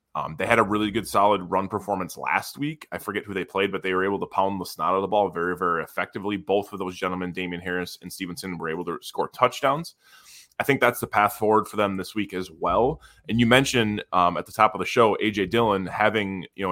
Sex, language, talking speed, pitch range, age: male, English, 250 wpm, 95-115 Hz, 20-39